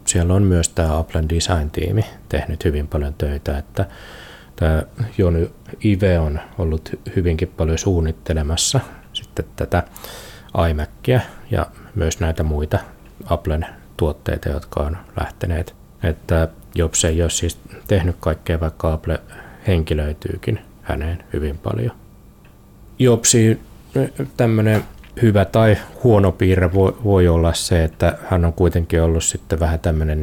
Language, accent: Finnish, native